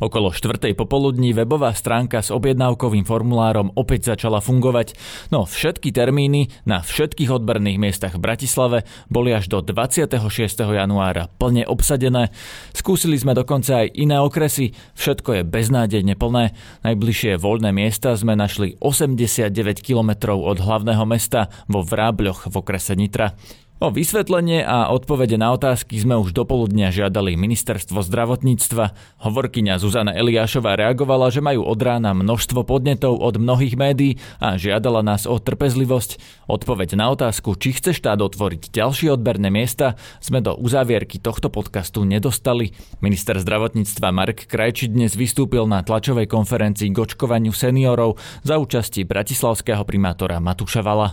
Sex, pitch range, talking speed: male, 105-130 Hz, 135 wpm